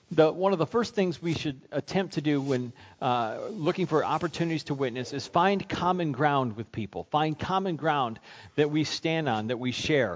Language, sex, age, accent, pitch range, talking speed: English, male, 40-59, American, 130-180 Hz, 195 wpm